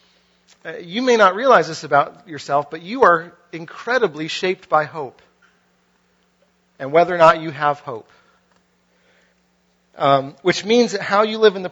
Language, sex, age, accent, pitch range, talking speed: English, male, 40-59, American, 135-190 Hz, 160 wpm